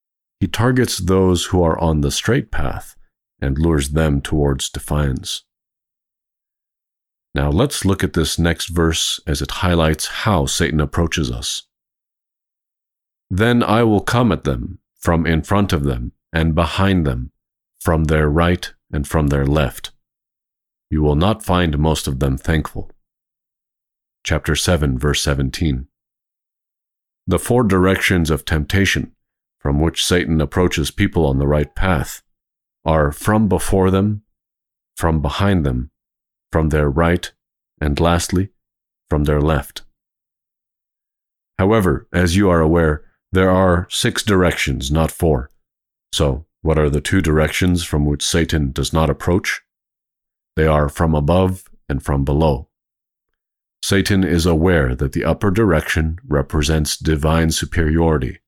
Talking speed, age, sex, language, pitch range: 135 wpm, 50-69, male, English, 75-90 Hz